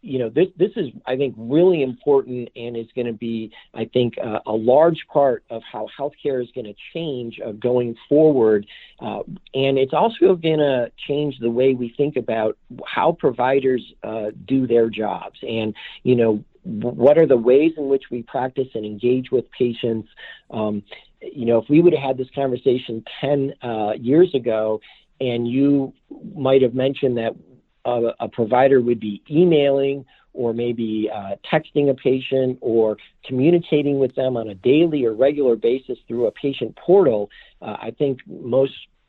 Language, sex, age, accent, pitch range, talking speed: English, male, 50-69, American, 115-140 Hz, 170 wpm